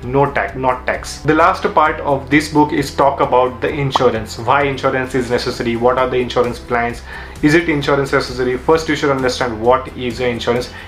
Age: 30-49